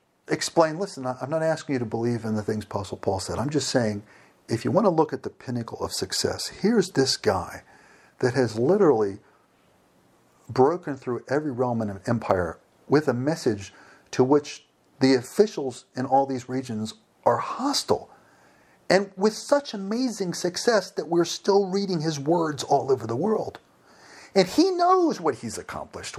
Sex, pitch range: male, 110-160 Hz